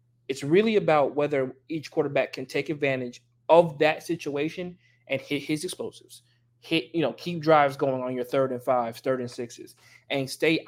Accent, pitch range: American, 125-180 Hz